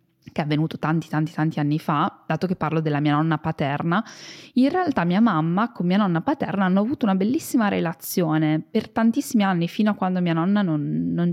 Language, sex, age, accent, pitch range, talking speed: Italian, female, 20-39, native, 155-205 Hz, 200 wpm